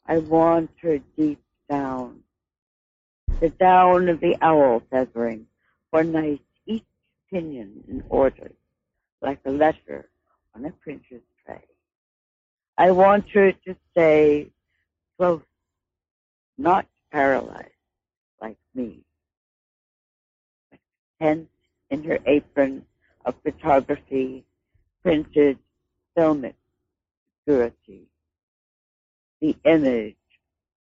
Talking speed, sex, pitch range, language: 90 wpm, female, 115-155 Hz, English